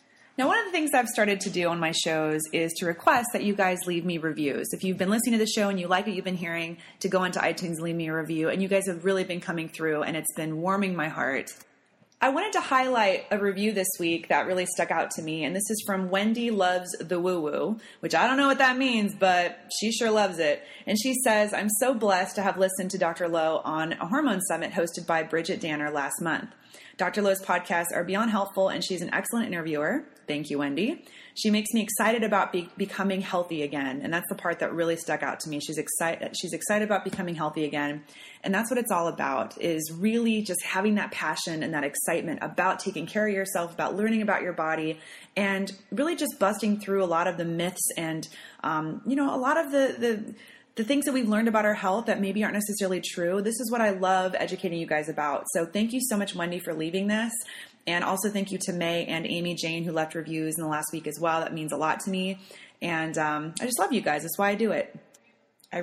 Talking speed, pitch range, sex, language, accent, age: 245 wpm, 165-210 Hz, female, English, American, 30-49